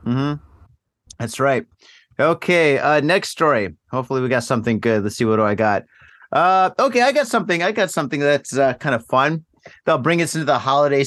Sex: male